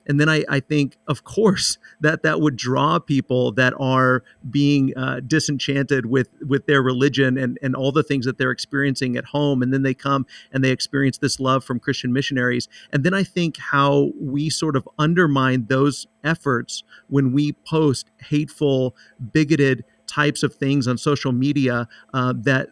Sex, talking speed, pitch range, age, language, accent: male, 175 wpm, 130-150 Hz, 50-69, English, American